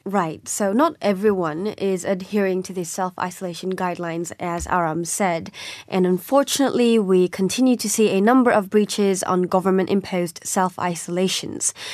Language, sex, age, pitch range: Korean, female, 20-39, 185-230 Hz